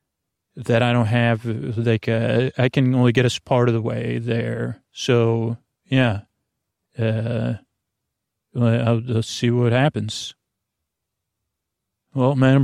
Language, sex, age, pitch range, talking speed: English, male, 40-59, 115-130 Hz, 125 wpm